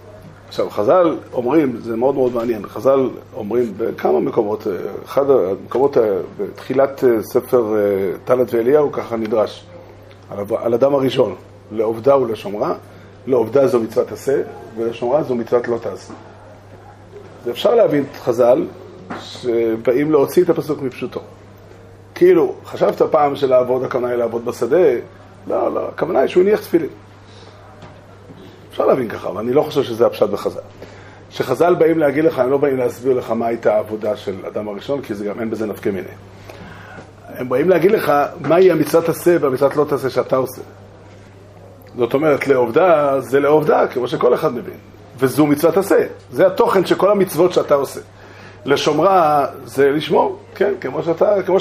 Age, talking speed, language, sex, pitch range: 30-49, 115 wpm, Hebrew, male, 105-150 Hz